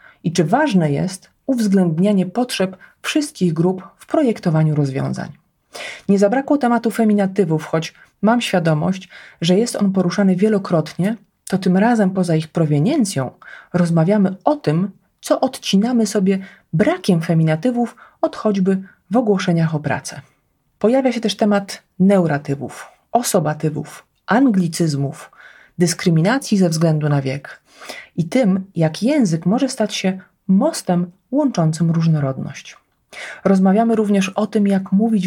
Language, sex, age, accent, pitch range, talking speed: Polish, female, 30-49, native, 160-210 Hz, 120 wpm